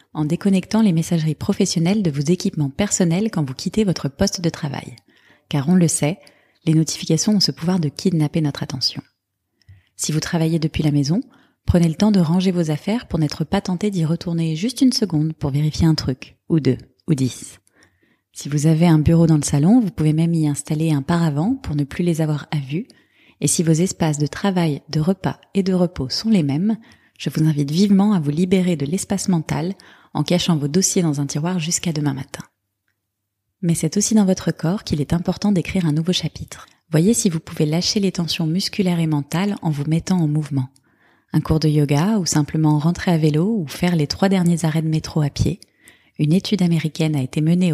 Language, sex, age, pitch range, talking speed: French, female, 20-39, 150-185 Hz, 210 wpm